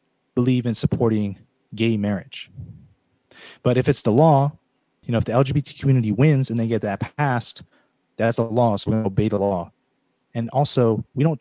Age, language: 30-49, English